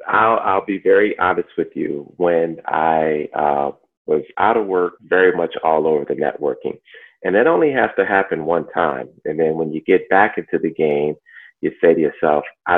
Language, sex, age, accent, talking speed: English, male, 40-59, American, 195 wpm